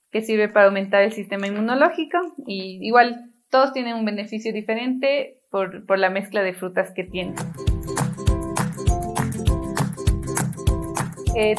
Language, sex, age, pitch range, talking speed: English, female, 30-49, 195-240 Hz, 120 wpm